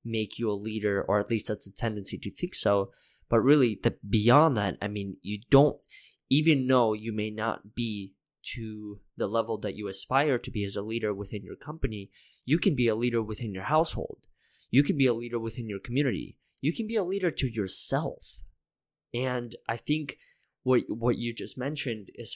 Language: English